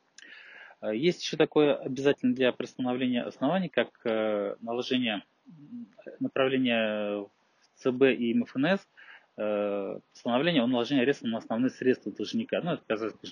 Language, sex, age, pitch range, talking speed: Russian, male, 20-39, 110-145 Hz, 110 wpm